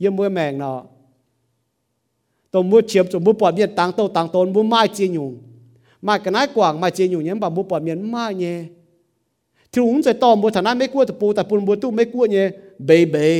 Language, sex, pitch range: English, male, 145-235 Hz